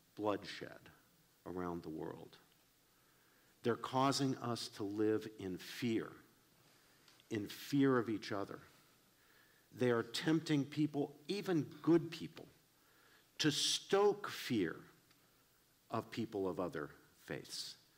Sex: male